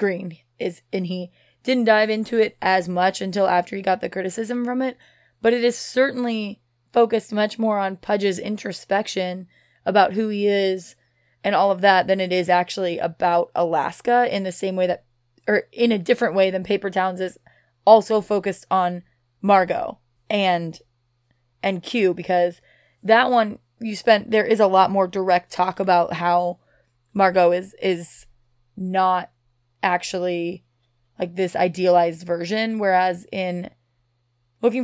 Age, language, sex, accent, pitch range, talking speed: 20-39, English, female, American, 170-200 Hz, 155 wpm